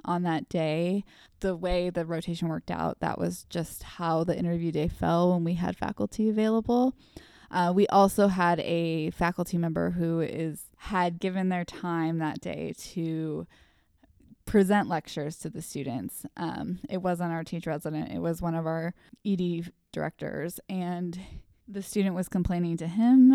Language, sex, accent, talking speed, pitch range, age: English, female, American, 160 wpm, 165-200 Hz, 20-39